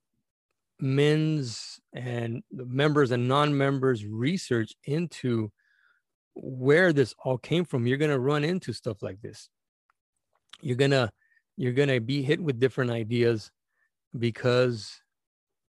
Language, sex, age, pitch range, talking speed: English, male, 40-59, 110-135 Hz, 115 wpm